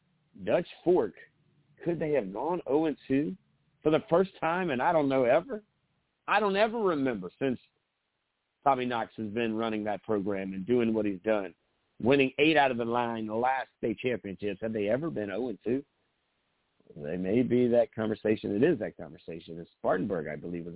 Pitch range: 105-140 Hz